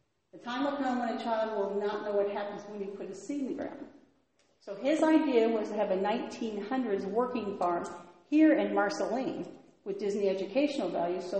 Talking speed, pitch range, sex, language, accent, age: 200 wpm, 200-295 Hz, female, English, American, 40-59